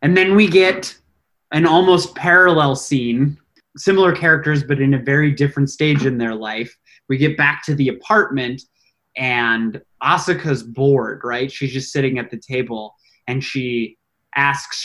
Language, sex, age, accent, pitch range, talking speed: English, male, 20-39, American, 130-175 Hz, 155 wpm